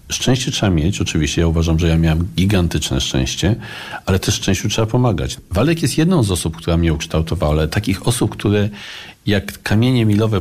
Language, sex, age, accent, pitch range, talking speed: Polish, male, 40-59, native, 85-115 Hz, 180 wpm